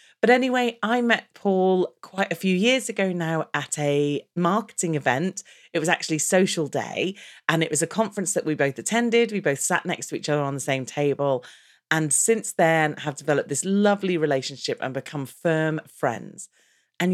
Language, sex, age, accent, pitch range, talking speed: English, female, 40-59, British, 145-195 Hz, 185 wpm